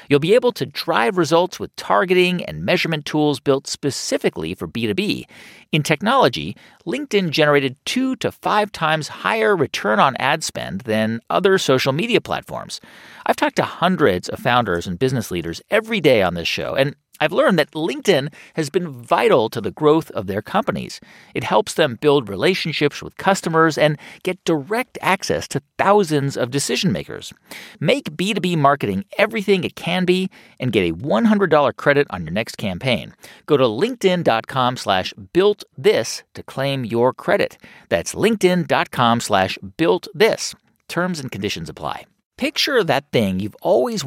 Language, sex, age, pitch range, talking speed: English, male, 40-59, 135-200 Hz, 160 wpm